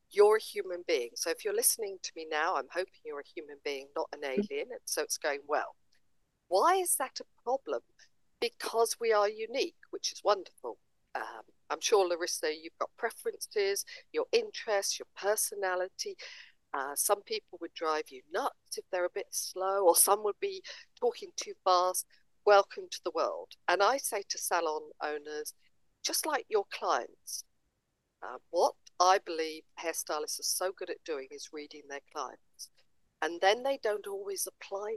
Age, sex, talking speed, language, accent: 50-69, female, 175 wpm, English, British